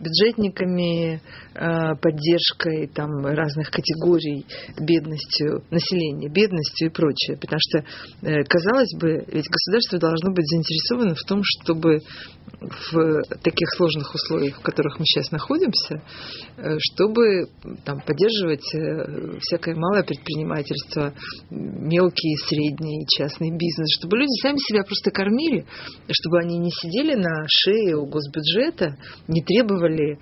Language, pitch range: Russian, 155-185 Hz